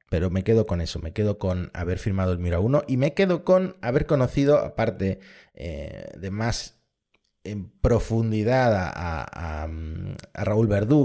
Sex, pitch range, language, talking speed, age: male, 95-120 Hz, Spanish, 155 wpm, 30-49